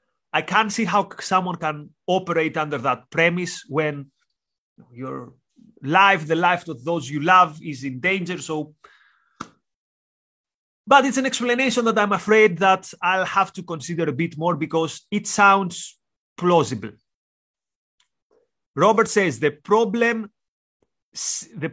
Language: English